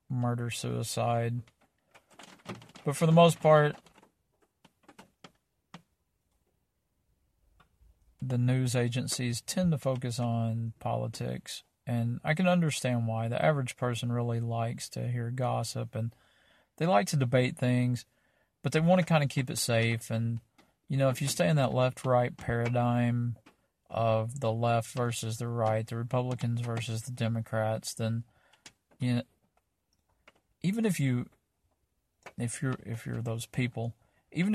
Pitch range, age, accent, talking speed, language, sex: 115-130 Hz, 40-59, American, 130 wpm, English, male